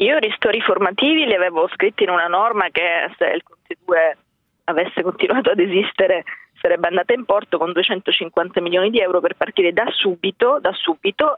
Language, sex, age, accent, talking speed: Italian, female, 20-39, native, 175 wpm